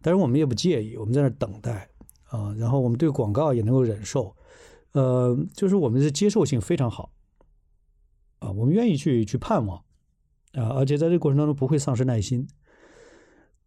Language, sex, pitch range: Chinese, male, 115-155 Hz